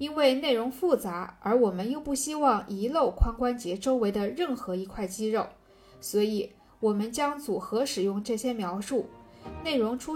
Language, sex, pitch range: Chinese, female, 200-270 Hz